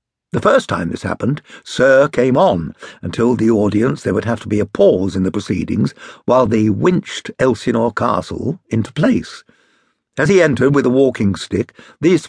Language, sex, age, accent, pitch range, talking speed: English, male, 60-79, British, 105-140 Hz, 175 wpm